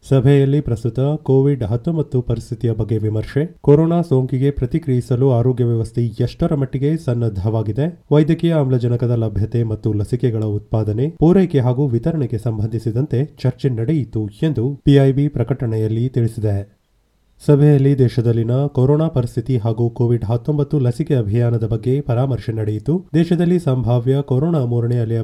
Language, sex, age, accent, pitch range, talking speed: Kannada, male, 30-49, native, 115-145 Hz, 115 wpm